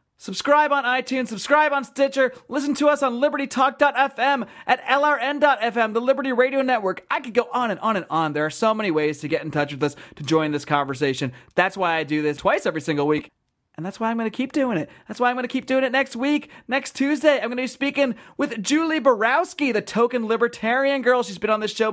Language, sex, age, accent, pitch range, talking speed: English, male, 30-49, American, 160-250 Hz, 240 wpm